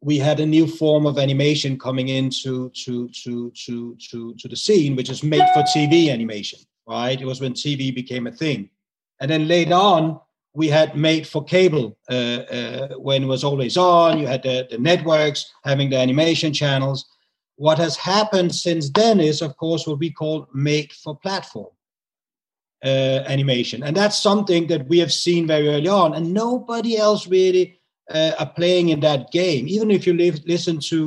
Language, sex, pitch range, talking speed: English, male, 140-175 Hz, 185 wpm